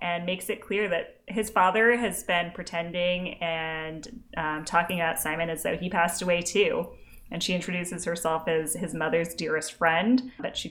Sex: female